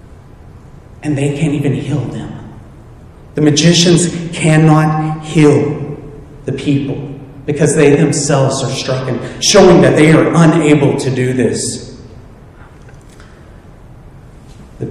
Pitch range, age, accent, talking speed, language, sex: 140-170 Hz, 30-49, American, 110 wpm, English, male